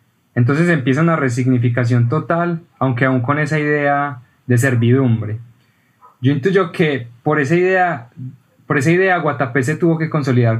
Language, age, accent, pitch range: Spanish, 10-29, Colombian, 120-145 Hz